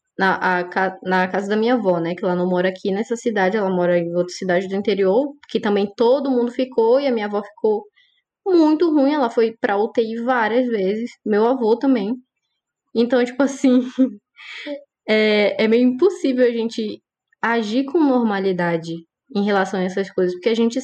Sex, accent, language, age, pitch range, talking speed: female, Brazilian, Portuguese, 10-29, 200-255 Hz, 180 wpm